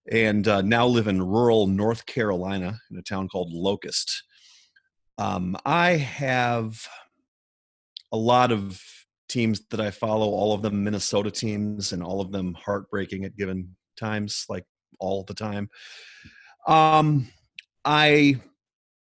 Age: 30-49